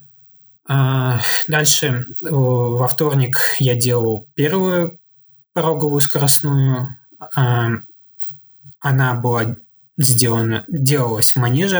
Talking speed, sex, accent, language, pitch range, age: 70 wpm, male, native, Russian, 125-145 Hz, 20-39